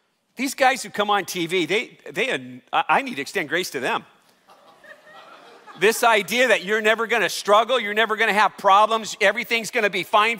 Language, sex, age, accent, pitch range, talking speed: English, male, 40-59, American, 210-275 Hz, 195 wpm